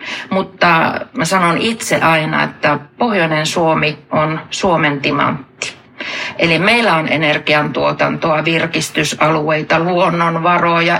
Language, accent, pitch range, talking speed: Finnish, native, 155-195 Hz, 95 wpm